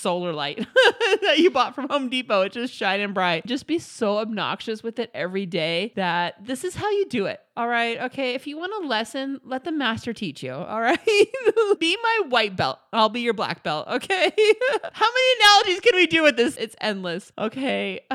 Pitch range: 200-315 Hz